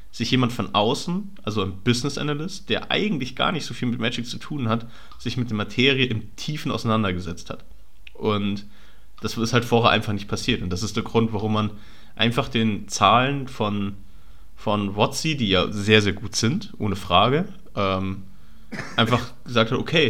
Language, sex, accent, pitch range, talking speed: German, male, German, 100-120 Hz, 180 wpm